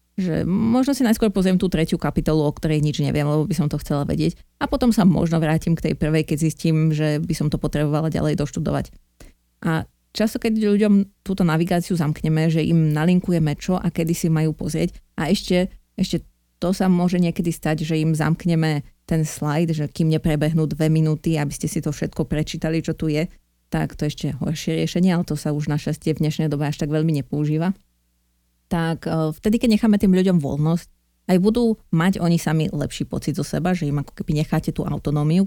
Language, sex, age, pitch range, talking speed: Slovak, female, 30-49, 150-175 Hz, 200 wpm